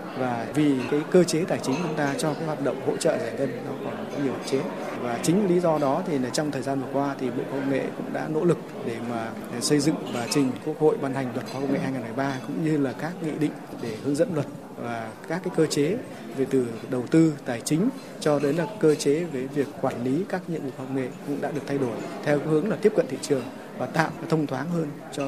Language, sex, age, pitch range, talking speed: Vietnamese, male, 20-39, 130-155 Hz, 270 wpm